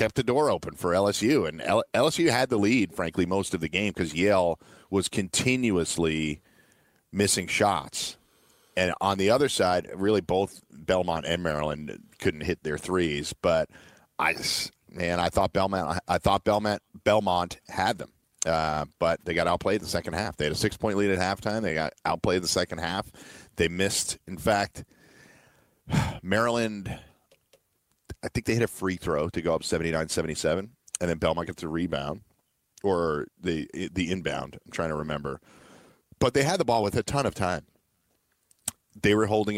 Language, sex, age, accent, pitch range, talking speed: English, male, 40-59, American, 80-105 Hz, 175 wpm